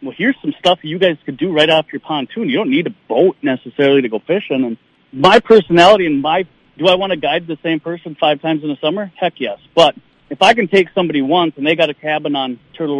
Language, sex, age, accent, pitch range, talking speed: English, male, 40-59, American, 140-175 Hz, 250 wpm